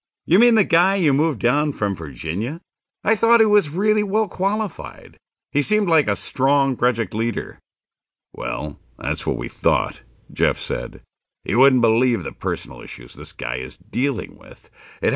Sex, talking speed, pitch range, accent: male, 165 wpm, 85-135 Hz, American